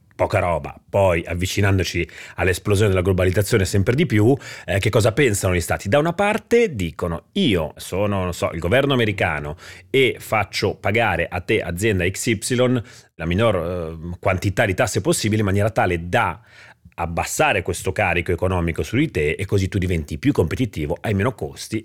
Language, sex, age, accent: Italian, male, 30-49, native